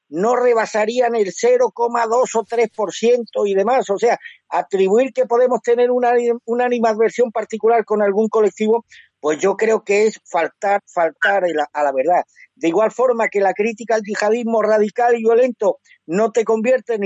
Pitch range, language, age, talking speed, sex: 195-235 Hz, Spanish, 50-69, 165 wpm, male